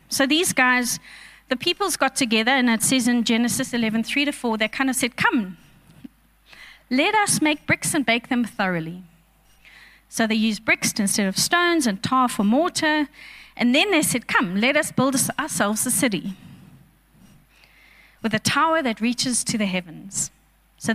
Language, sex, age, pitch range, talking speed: English, female, 30-49, 215-265 Hz, 170 wpm